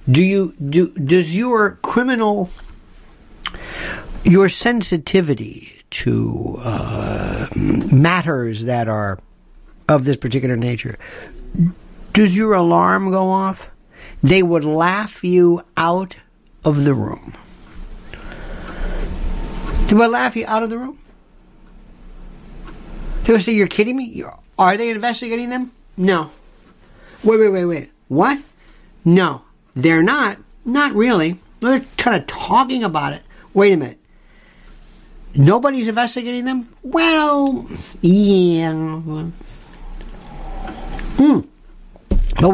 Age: 60-79